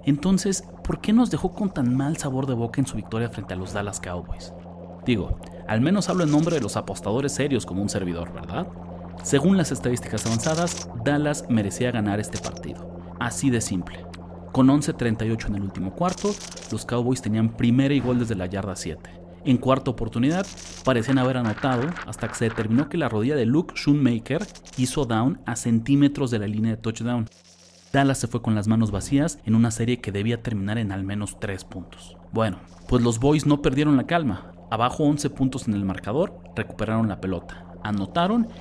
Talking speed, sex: 190 wpm, male